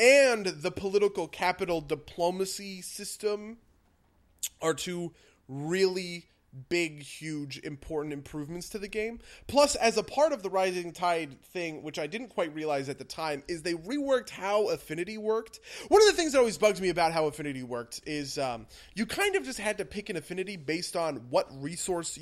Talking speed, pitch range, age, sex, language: 180 wpm, 140-195 Hz, 20-39, male, English